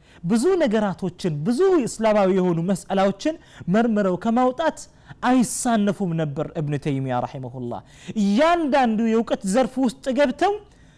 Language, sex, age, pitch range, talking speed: Amharic, male, 30-49, 140-210 Hz, 110 wpm